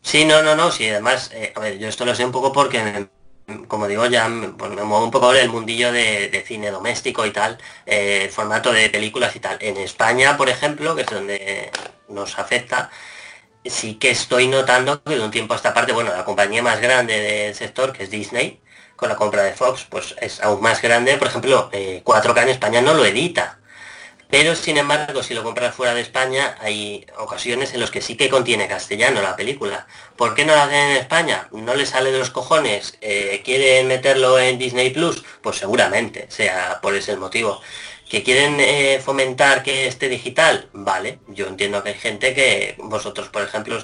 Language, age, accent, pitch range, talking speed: Spanish, 20-39, Spanish, 105-130 Hz, 205 wpm